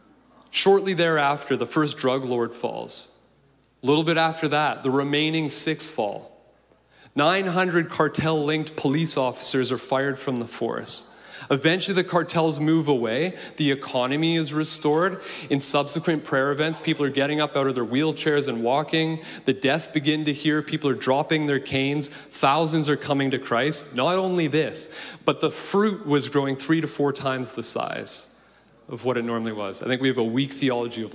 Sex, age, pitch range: male, 30-49, 130-160 Hz